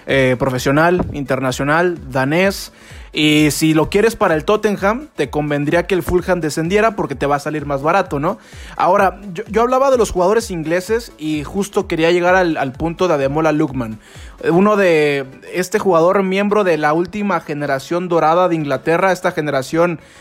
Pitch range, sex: 155-200 Hz, male